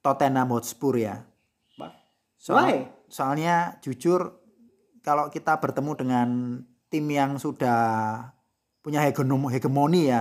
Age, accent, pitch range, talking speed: 30-49, native, 115-140 Hz, 100 wpm